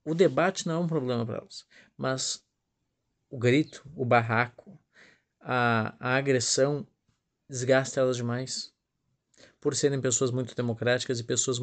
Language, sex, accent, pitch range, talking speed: Portuguese, male, Brazilian, 125-150 Hz, 135 wpm